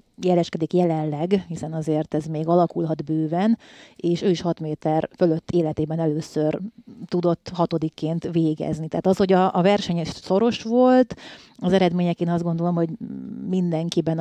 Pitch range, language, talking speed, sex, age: 160-185 Hz, Hungarian, 140 wpm, female, 30-49